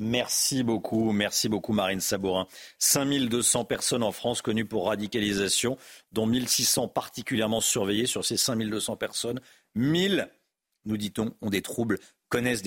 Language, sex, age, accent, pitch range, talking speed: French, male, 50-69, French, 110-140 Hz, 135 wpm